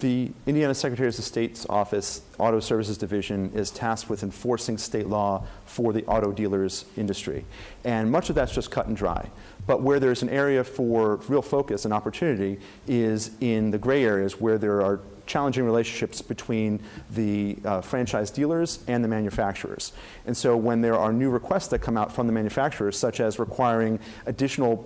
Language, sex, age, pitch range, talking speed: English, male, 40-59, 105-125 Hz, 175 wpm